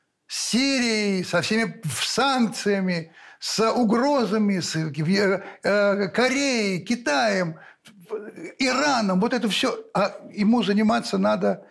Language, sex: Russian, male